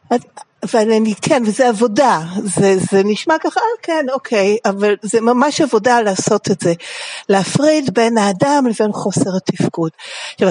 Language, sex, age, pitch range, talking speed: Hebrew, female, 60-79, 190-275 Hz, 135 wpm